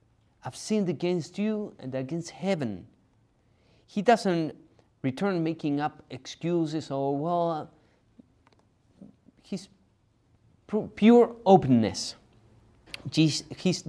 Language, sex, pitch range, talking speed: English, male, 115-160 Hz, 80 wpm